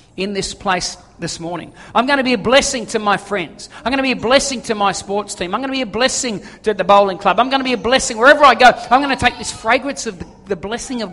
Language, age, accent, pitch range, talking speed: English, 50-69, Australian, 180-250 Hz, 285 wpm